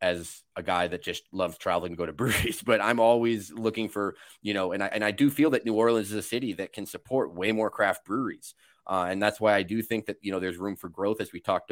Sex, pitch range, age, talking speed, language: male, 95-115 Hz, 30-49, 275 wpm, English